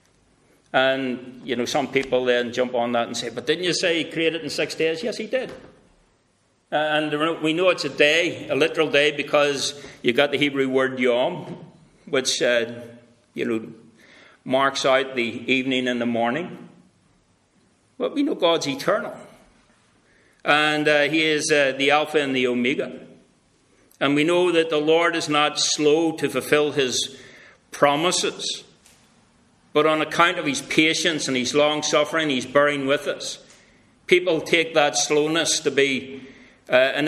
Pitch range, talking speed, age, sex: 130-165 Hz, 165 wpm, 60-79, male